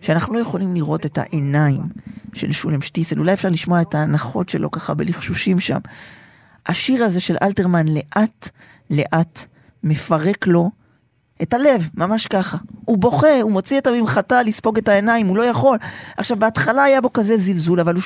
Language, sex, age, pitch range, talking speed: Hebrew, male, 20-39, 165-220 Hz, 165 wpm